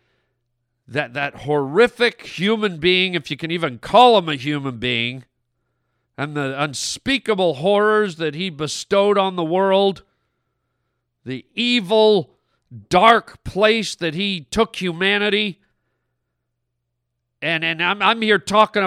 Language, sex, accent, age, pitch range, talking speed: English, male, American, 50-69, 130-205 Hz, 120 wpm